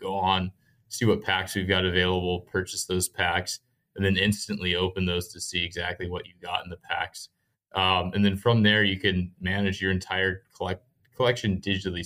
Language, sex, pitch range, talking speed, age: English, male, 90-105 Hz, 190 wpm, 20-39